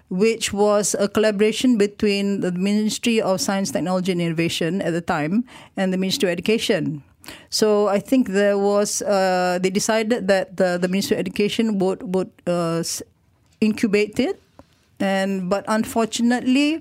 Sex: female